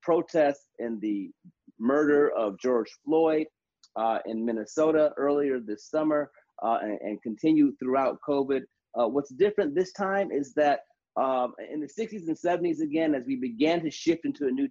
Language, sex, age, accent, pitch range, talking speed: English, male, 30-49, American, 120-165 Hz, 165 wpm